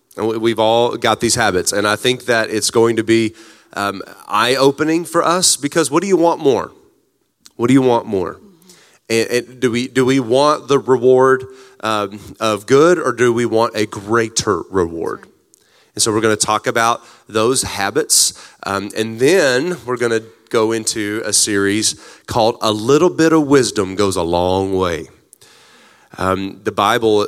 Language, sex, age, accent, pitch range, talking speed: English, male, 30-49, American, 105-130 Hz, 175 wpm